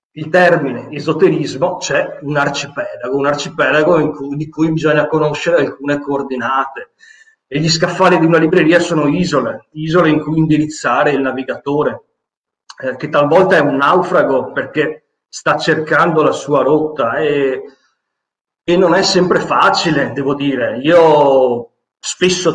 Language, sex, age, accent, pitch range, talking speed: Italian, male, 40-59, native, 140-170 Hz, 140 wpm